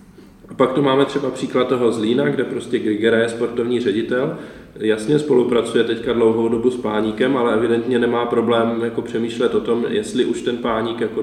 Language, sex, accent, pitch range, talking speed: Czech, male, native, 105-120 Hz, 180 wpm